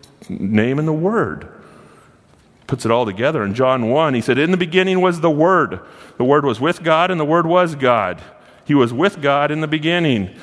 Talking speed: 205 wpm